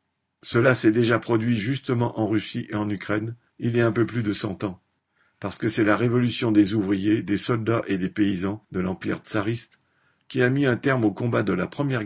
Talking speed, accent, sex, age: 220 wpm, French, male, 50-69